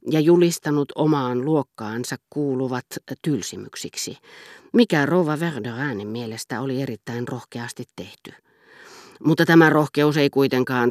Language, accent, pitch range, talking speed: Finnish, native, 125-150 Hz, 105 wpm